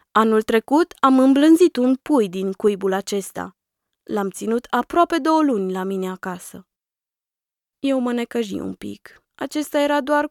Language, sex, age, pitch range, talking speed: Romanian, female, 20-39, 200-290 Hz, 145 wpm